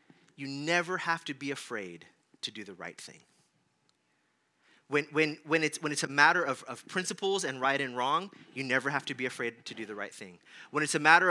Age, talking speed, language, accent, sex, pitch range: 30-49, 220 wpm, English, American, male, 120-160 Hz